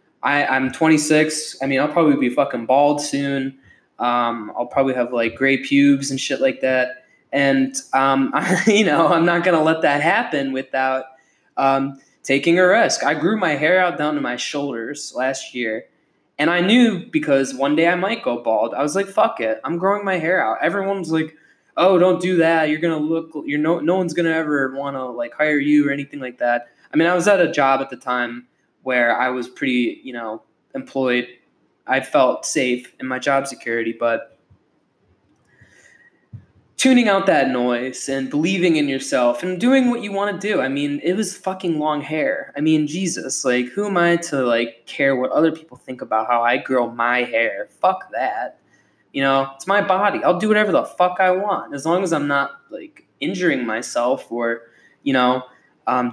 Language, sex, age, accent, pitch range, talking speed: English, male, 10-29, American, 130-170 Hz, 200 wpm